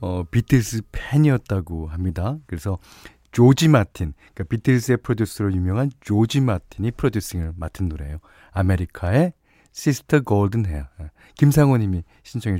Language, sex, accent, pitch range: Korean, male, native, 90-145 Hz